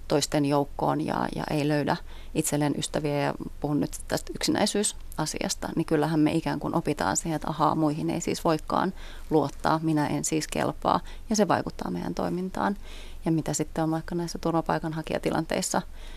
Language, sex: Finnish, female